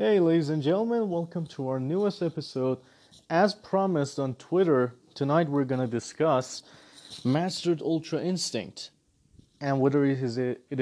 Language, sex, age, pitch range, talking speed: English, male, 30-49, 120-165 Hz, 135 wpm